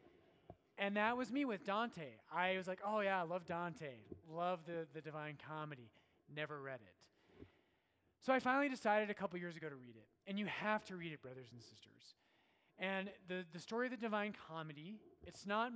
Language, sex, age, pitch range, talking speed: English, male, 30-49, 155-210 Hz, 200 wpm